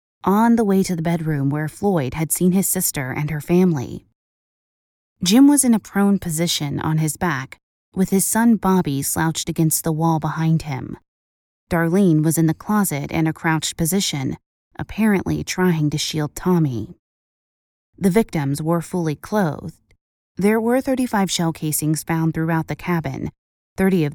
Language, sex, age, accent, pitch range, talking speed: English, female, 20-39, American, 155-190 Hz, 160 wpm